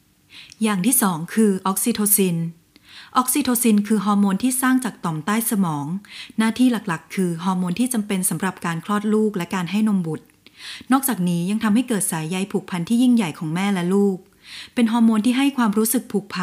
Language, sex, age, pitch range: Thai, female, 20-39, 175-225 Hz